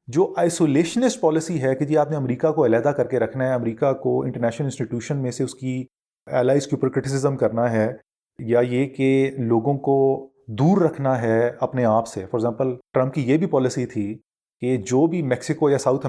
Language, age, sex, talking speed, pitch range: Urdu, 30-49, male, 200 wpm, 115-150 Hz